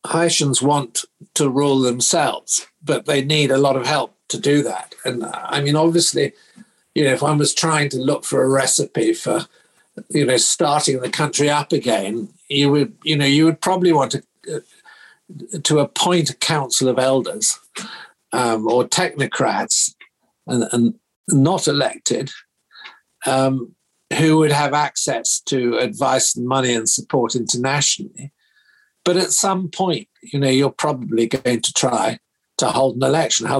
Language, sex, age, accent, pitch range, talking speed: English, male, 50-69, British, 130-165 Hz, 160 wpm